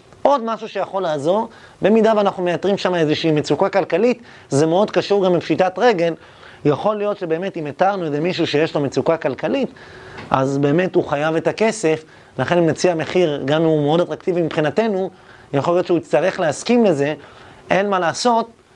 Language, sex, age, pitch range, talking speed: Hebrew, male, 30-49, 150-190 Hz, 170 wpm